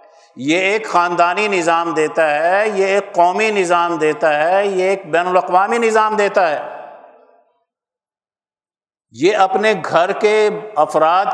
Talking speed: 125 wpm